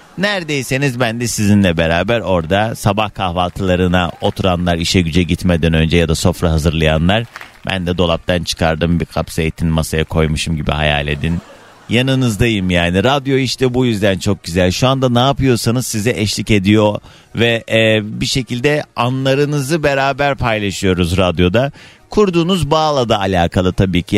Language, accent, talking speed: Turkish, native, 140 wpm